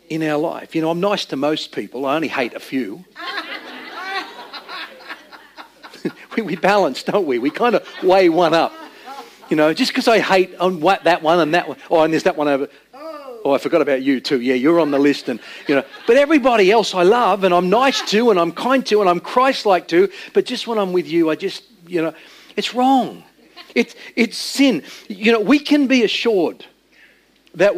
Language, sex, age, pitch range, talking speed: English, male, 50-69, 170-265 Hz, 210 wpm